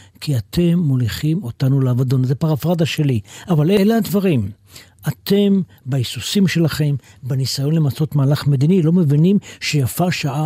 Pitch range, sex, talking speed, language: 130-190 Hz, male, 125 wpm, Hebrew